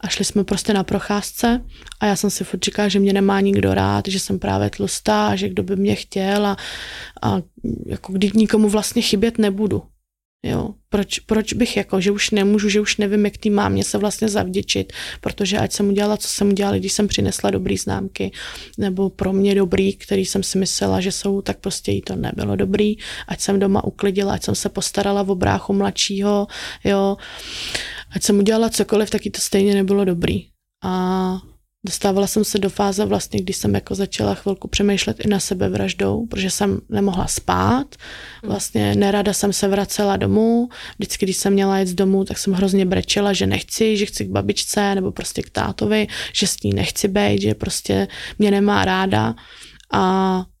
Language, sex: Czech, female